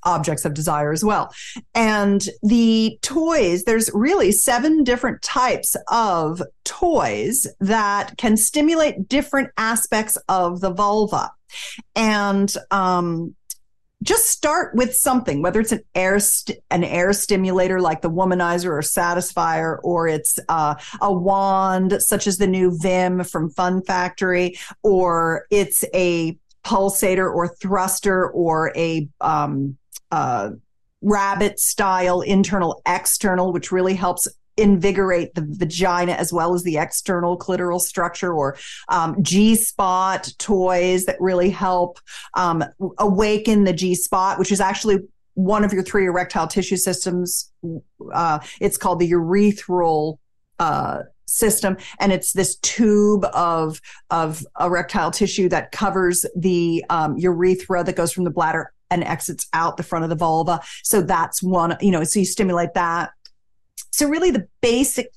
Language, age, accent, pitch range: English, 50-69, American, 175-205 Hz